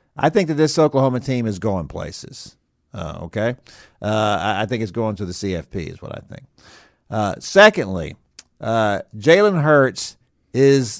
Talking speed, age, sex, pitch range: 160 wpm, 50-69, male, 100-140 Hz